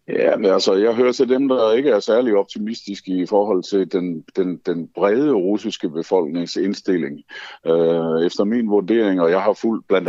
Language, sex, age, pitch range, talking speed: Danish, male, 60-79, 90-120 Hz, 180 wpm